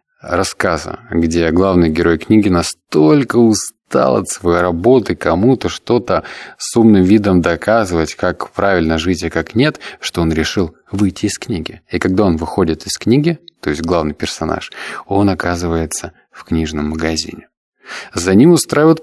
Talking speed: 155 wpm